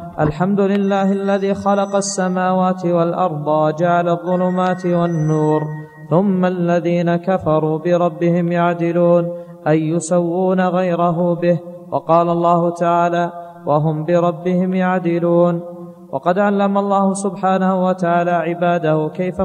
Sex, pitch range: male, 170-185 Hz